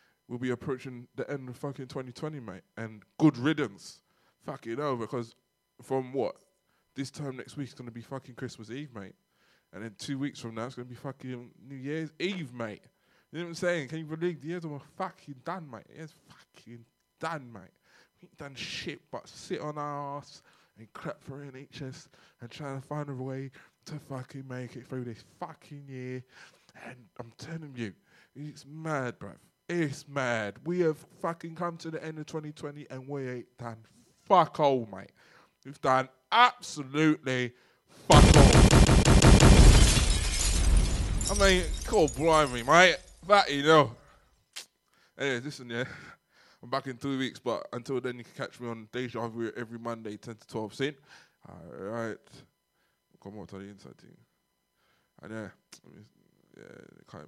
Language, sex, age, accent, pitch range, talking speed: English, male, 20-39, British, 120-150 Hz, 170 wpm